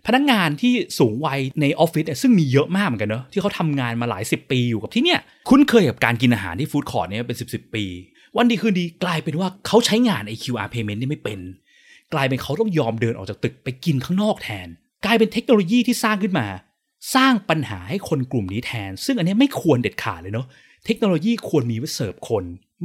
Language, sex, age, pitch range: Thai, male, 20-39, 115-180 Hz